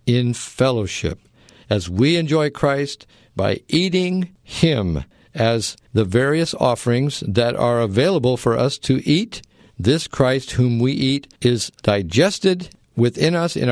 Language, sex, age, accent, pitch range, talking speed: English, male, 60-79, American, 110-145 Hz, 130 wpm